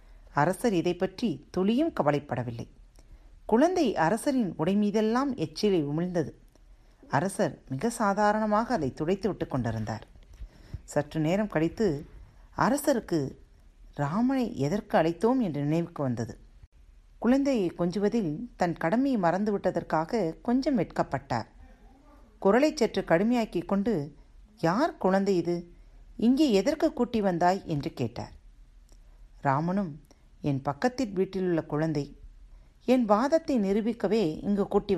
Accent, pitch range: native, 140-220 Hz